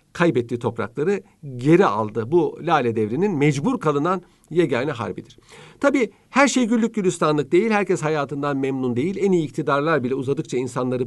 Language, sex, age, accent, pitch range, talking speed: Turkish, male, 50-69, native, 125-170 Hz, 145 wpm